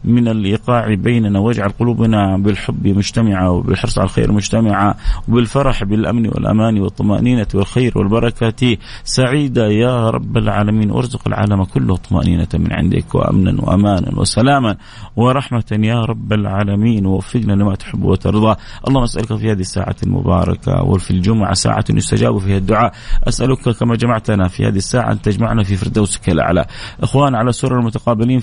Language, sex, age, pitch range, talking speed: English, male, 30-49, 100-120 Hz, 135 wpm